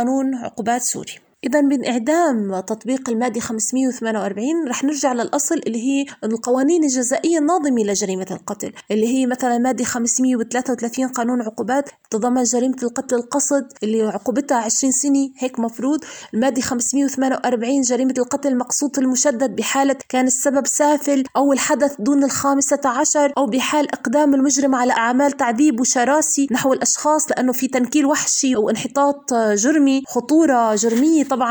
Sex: female